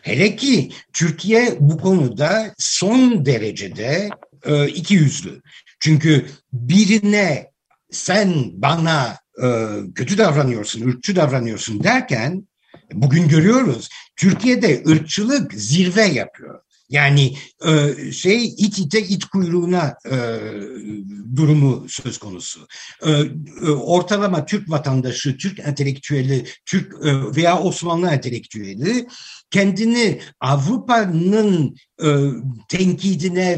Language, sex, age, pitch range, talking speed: Turkish, male, 60-79, 135-190 Hz, 80 wpm